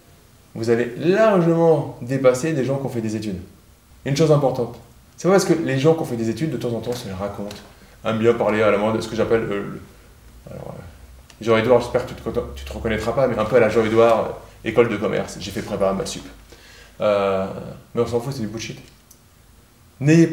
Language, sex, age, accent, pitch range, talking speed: French, male, 20-39, French, 115-140 Hz, 235 wpm